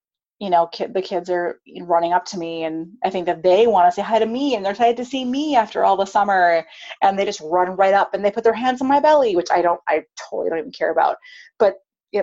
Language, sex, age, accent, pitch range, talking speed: English, female, 30-49, American, 195-300 Hz, 270 wpm